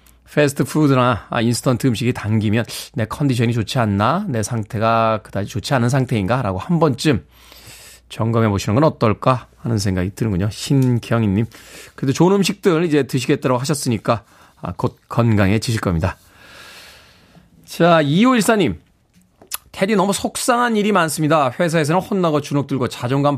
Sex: male